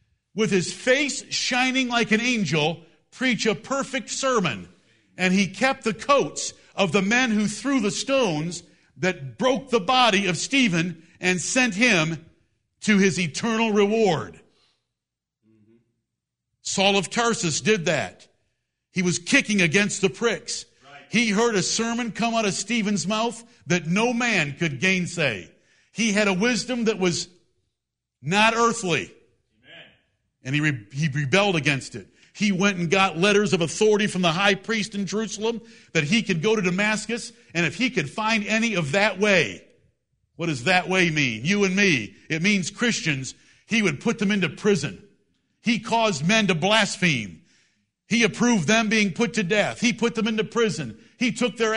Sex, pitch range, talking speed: male, 170-225 Hz, 165 wpm